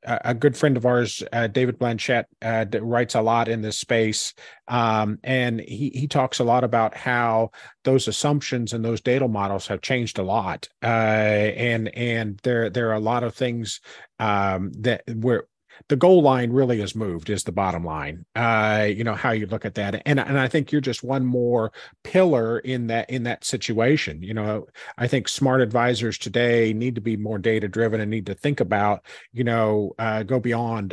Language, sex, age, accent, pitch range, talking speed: English, male, 40-59, American, 110-130 Hz, 200 wpm